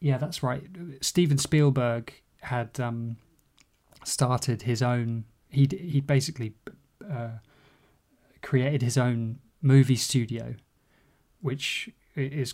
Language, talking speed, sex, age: English, 95 wpm, male, 20-39